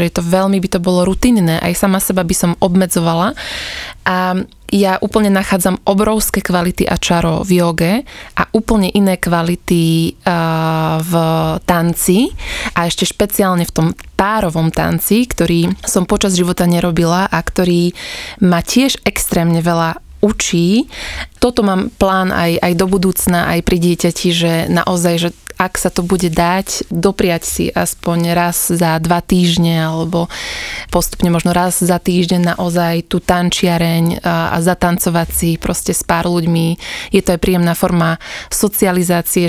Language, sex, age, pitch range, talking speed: Slovak, female, 20-39, 170-195 Hz, 145 wpm